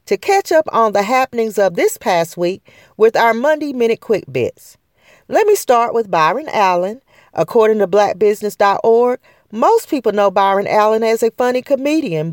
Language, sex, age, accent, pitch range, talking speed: English, female, 40-59, American, 175-240 Hz, 165 wpm